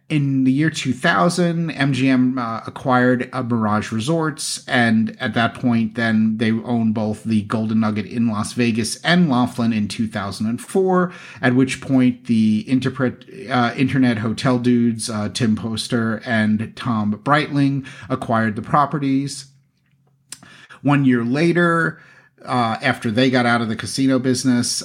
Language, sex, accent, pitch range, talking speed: English, male, American, 110-135 Hz, 140 wpm